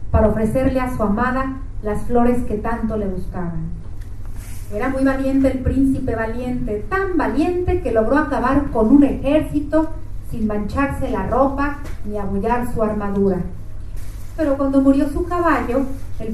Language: Chinese